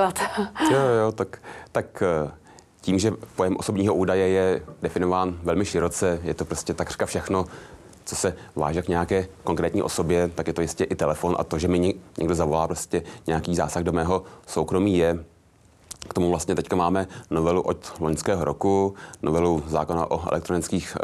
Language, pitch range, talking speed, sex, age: Czech, 80-90 Hz, 165 wpm, male, 30-49